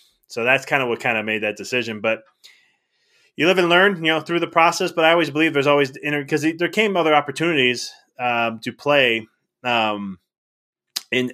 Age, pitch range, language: 20-39, 110-135 Hz, English